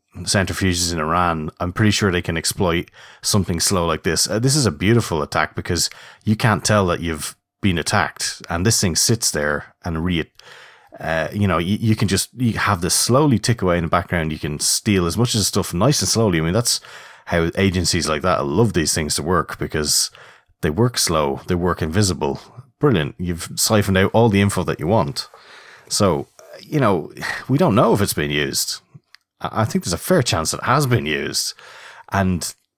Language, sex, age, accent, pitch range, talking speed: English, male, 30-49, Irish, 85-115 Hz, 205 wpm